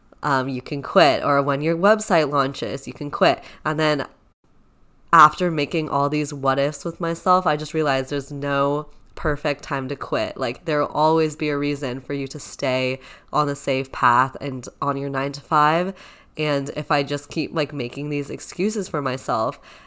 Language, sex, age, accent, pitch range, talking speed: English, female, 20-39, American, 135-155 Hz, 190 wpm